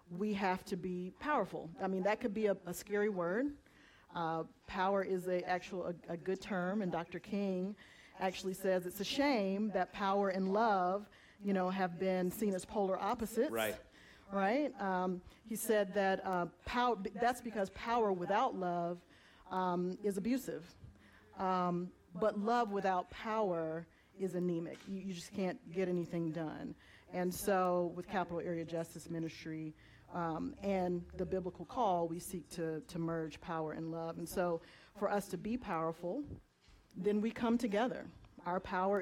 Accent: American